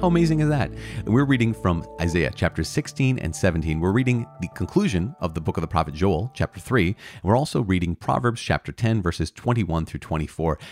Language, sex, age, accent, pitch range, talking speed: English, male, 30-49, American, 85-120 Hz, 195 wpm